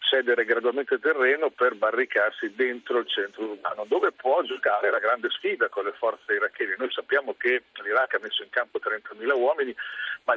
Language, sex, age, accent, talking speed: Italian, male, 50-69, native, 175 wpm